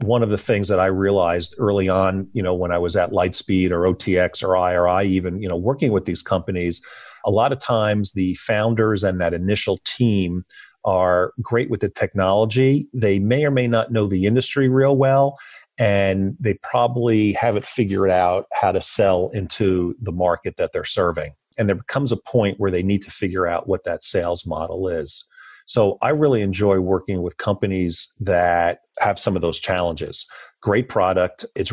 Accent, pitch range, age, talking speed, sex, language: American, 90-110 Hz, 40-59, 185 wpm, male, English